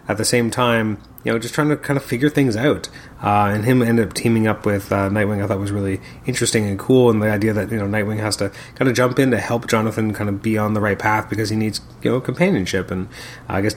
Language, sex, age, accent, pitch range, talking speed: English, male, 30-49, American, 105-125 Hz, 280 wpm